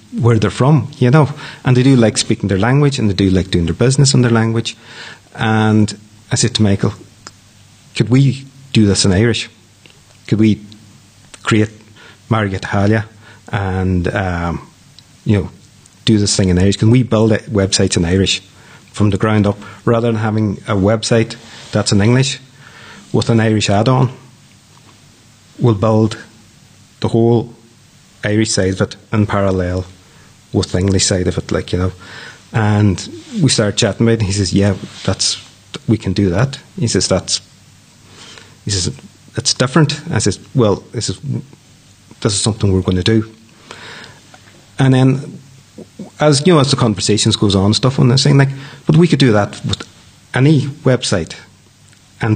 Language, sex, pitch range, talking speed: English, male, 100-125 Hz, 170 wpm